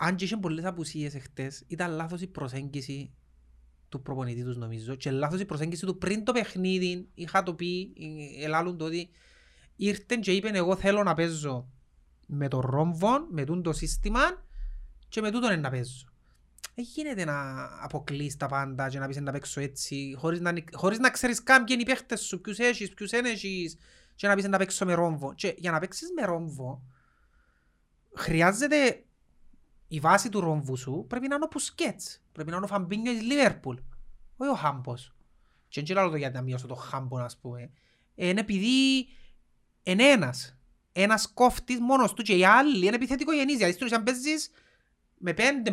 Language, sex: Greek, male